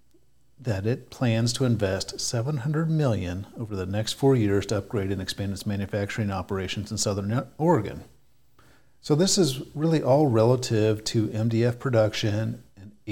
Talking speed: 145 wpm